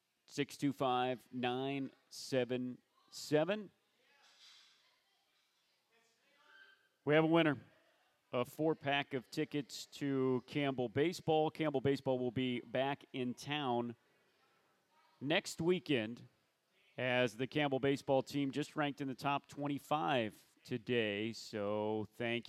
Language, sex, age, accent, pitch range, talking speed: English, male, 40-59, American, 125-155 Hz, 105 wpm